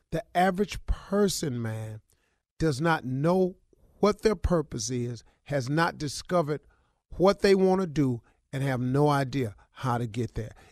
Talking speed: 150 wpm